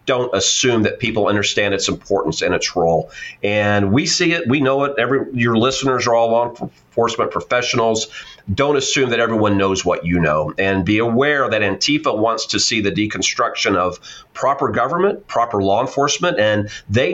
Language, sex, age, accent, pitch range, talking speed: English, male, 40-59, American, 105-130 Hz, 180 wpm